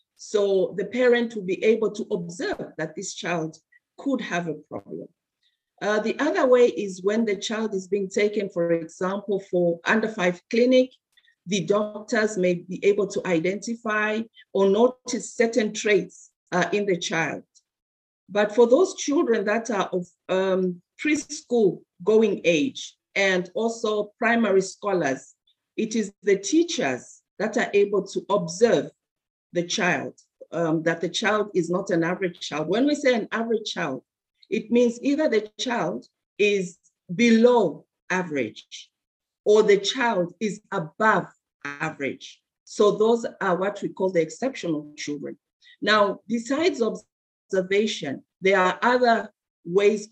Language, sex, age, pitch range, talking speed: English, female, 50-69, 180-225 Hz, 140 wpm